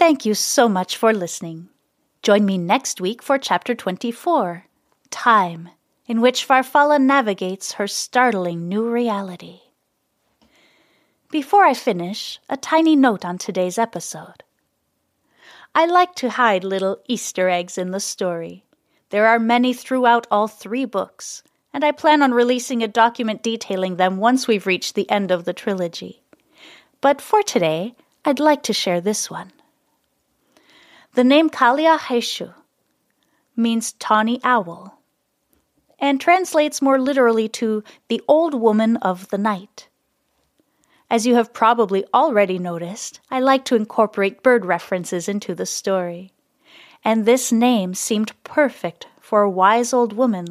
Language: English